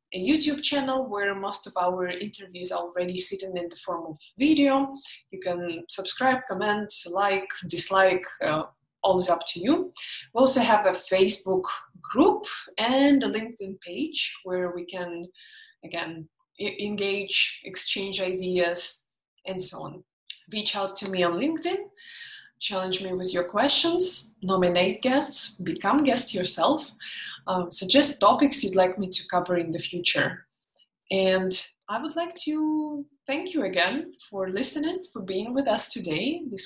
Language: English